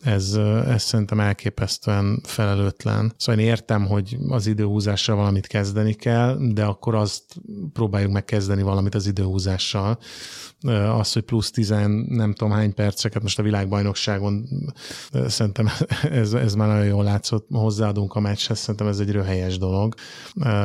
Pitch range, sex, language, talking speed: 105-120 Hz, male, Hungarian, 140 wpm